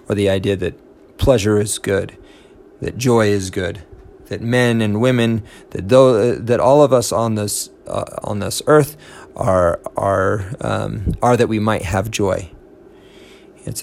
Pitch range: 100-120 Hz